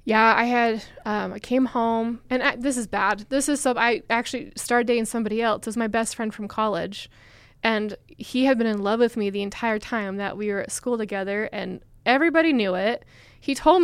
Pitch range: 200-225 Hz